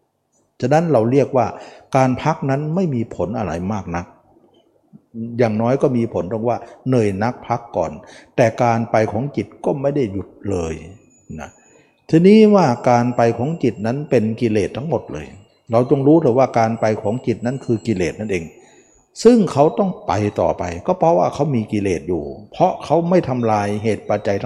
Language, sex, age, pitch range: Thai, male, 60-79, 110-140 Hz